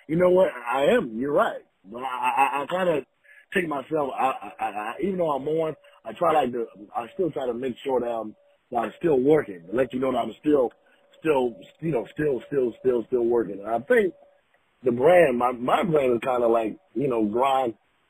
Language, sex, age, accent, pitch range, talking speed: English, male, 30-49, American, 105-130 Hz, 220 wpm